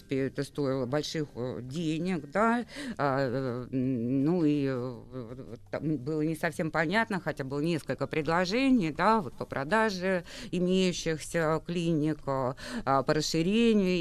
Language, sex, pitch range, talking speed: Russian, female, 140-180 Hz, 100 wpm